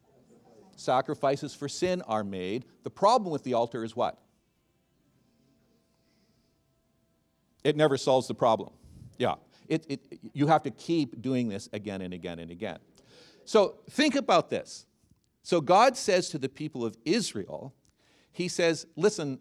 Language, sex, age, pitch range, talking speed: English, male, 50-69, 120-180 Hz, 135 wpm